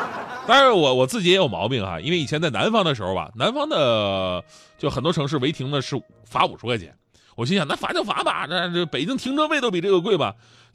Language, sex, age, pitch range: Chinese, male, 30-49, 125-205 Hz